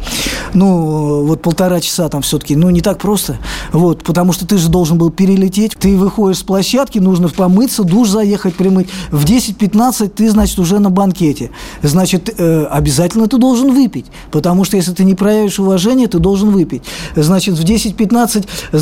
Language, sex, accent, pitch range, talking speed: Russian, male, native, 180-220 Hz, 165 wpm